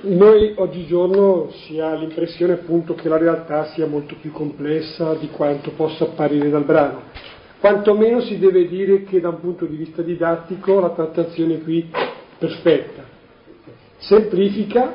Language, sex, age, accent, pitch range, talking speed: Italian, male, 40-59, native, 160-195 Hz, 145 wpm